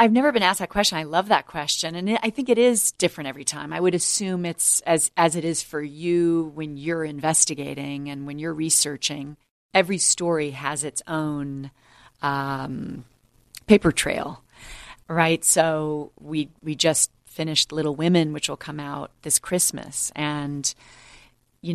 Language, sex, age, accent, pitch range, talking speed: English, female, 30-49, American, 140-165 Hz, 165 wpm